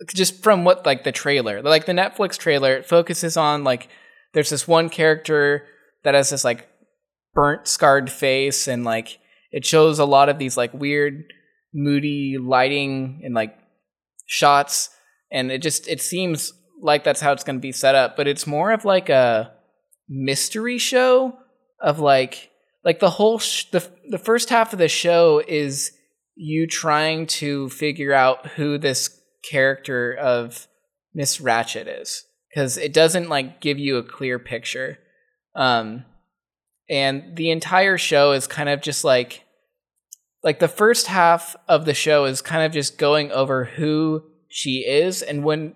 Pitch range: 135-170 Hz